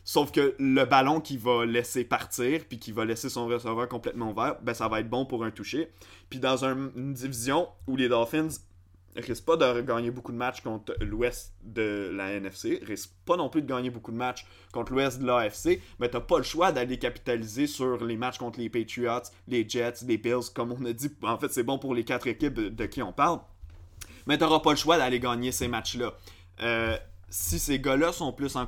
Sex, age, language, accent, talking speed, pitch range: male, 20-39, French, Canadian, 225 wpm, 105-130 Hz